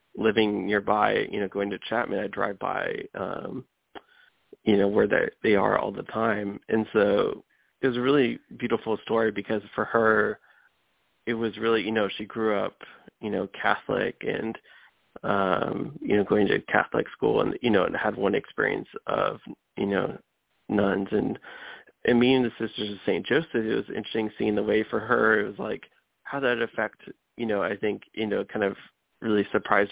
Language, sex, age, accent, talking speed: English, male, 20-39, American, 190 wpm